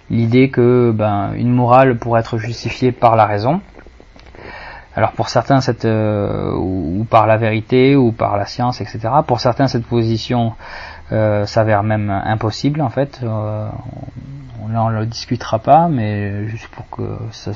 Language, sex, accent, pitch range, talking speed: French, male, French, 110-135 Hz, 155 wpm